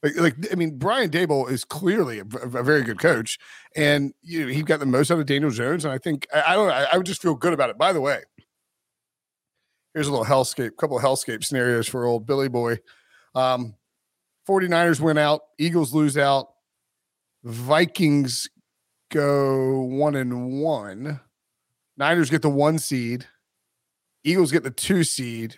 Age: 40-59